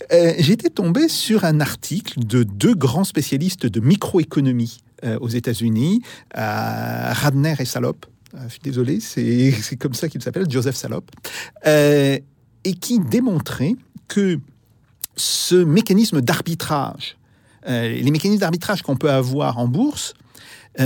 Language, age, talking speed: French, 50-69, 140 wpm